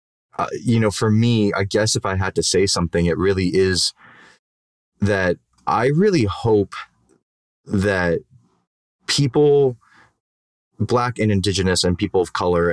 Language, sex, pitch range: English, male, 90-110 Hz